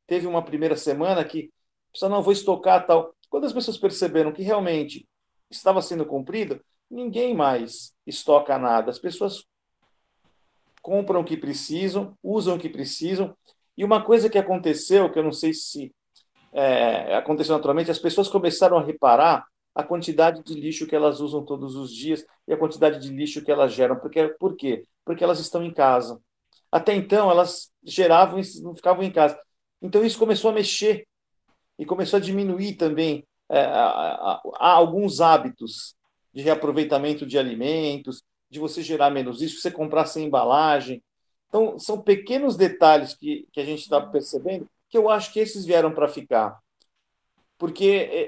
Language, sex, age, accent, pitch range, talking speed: Portuguese, male, 50-69, Brazilian, 150-200 Hz, 165 wpm